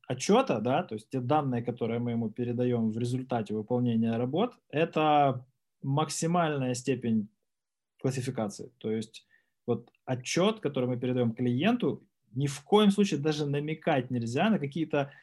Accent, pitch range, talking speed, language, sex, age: native, 125-160 Hz, 140 wpm, Ukrainian, male, 20-39